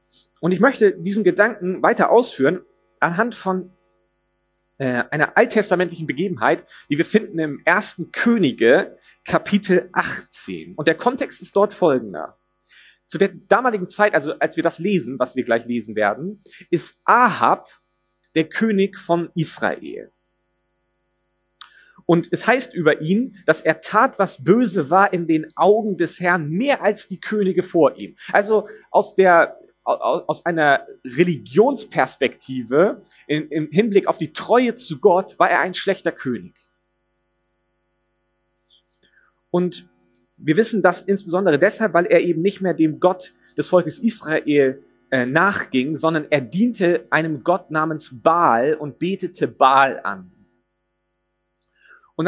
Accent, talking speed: German, 135 wpm